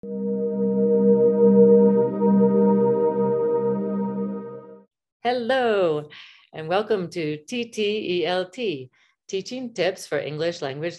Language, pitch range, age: English, 155-220 Hz, 40-59